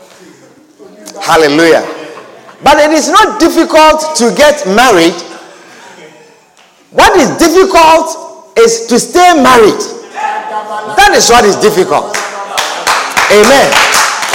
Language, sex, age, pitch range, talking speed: English, male, 50-69, 235-340 Hz, 90 wpm